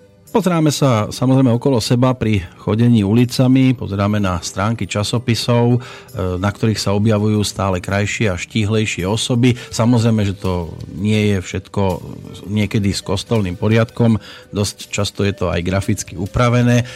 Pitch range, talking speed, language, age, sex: 95-115 Hz, 135 wpm, Slovak, 40-59, male